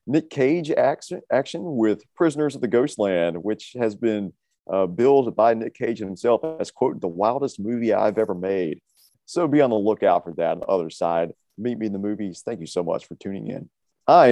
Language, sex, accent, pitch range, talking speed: English, male, American, 95-120 Hz, 215 wpm